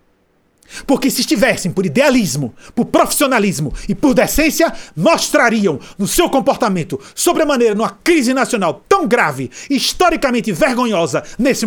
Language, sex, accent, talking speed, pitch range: Portuguese, male, Brazilian, 130 wpm, 180-260 Hz